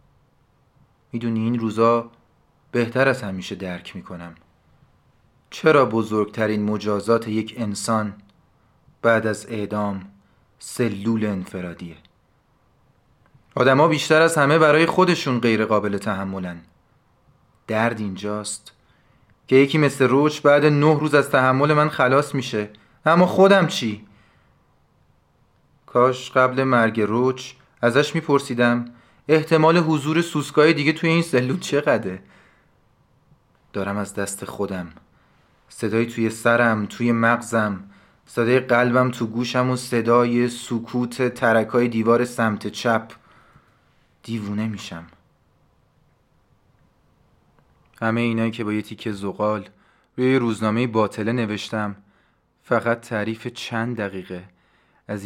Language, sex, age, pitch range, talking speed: Persian, male, 30-49, 100-130 Hz, 105 wpm